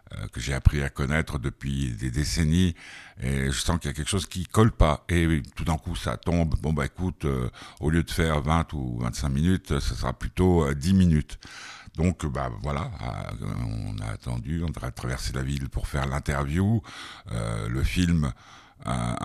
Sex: male